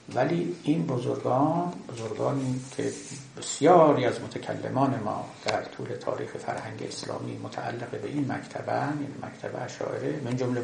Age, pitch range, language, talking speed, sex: 60-79, 120-145 Hz, Persian, 130 wpm, male